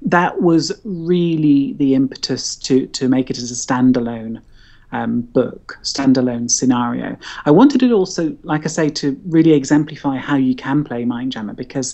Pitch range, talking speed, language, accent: 130-170 Hz, 160 wpm, English, British